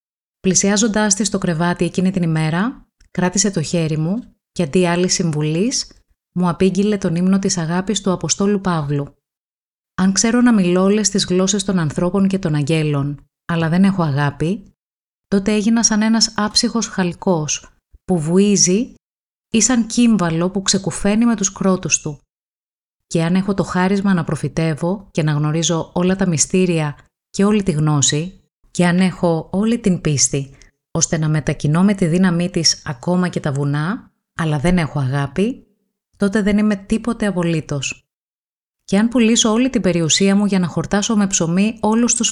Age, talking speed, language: 20-39, 160 wpm, Greek